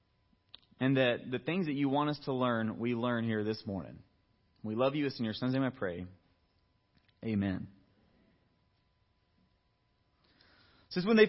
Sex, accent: male, American